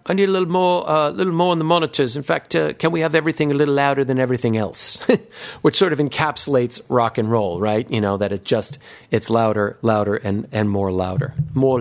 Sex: male